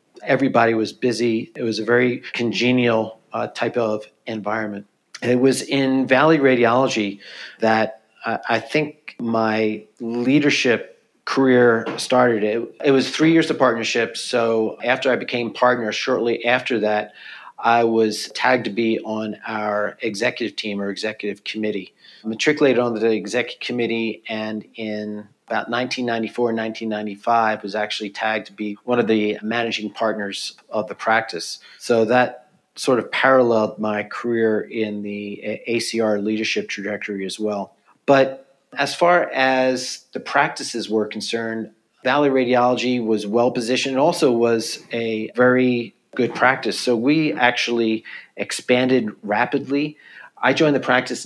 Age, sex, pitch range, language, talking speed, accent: 40-59, male, 110-125 Hz, English, 140 wpm, American